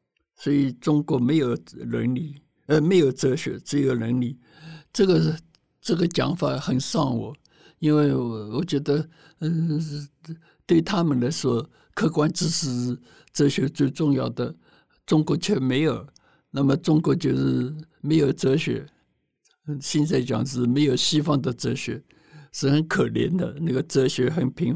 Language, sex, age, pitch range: Chinese, male, 60-79, 120-155 Hz